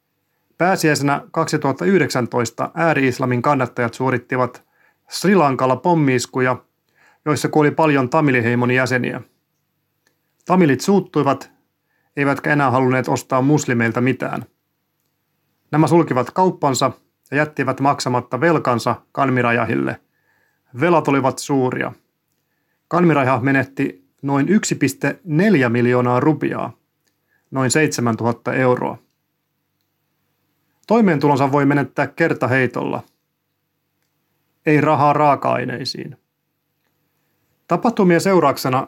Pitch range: 130-160 Hz